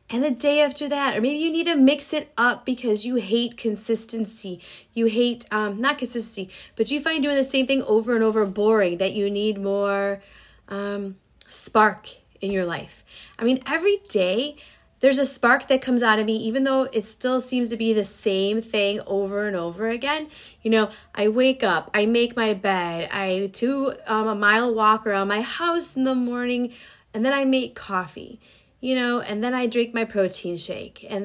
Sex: female